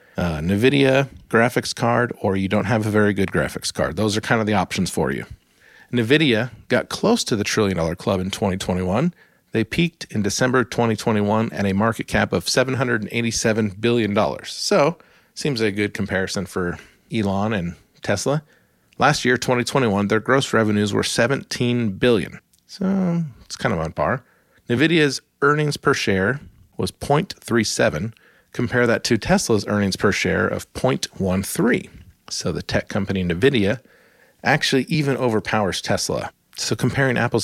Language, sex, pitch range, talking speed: English, male, 105-140 Hz, 150 wpm